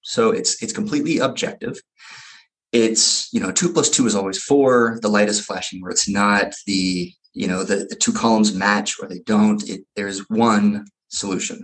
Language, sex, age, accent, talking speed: English, male, 30-49, American, 185 wpm